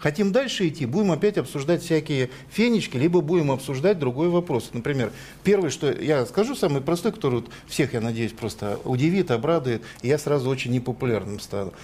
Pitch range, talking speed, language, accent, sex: 120-170 Hz, 160 wpm, Russian, native, male